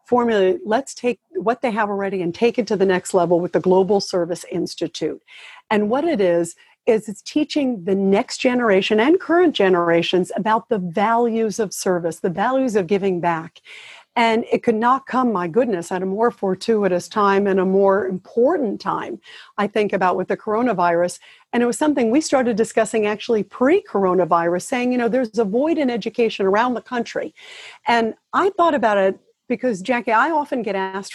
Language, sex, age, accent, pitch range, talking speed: English, female, 50-69, American, 195-245 Hz, 185 wpm